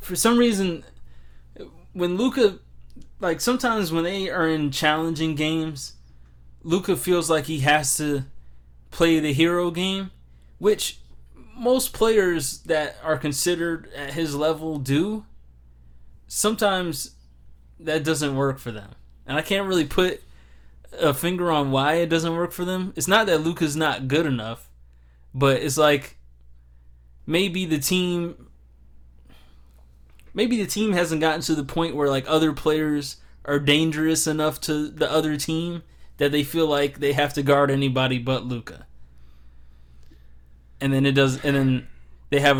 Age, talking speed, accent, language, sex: 20-39, 145 wpm, American, English, male